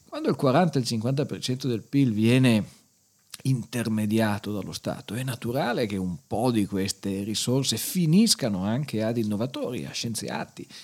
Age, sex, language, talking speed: 50-69, male, Italian, 125 wpm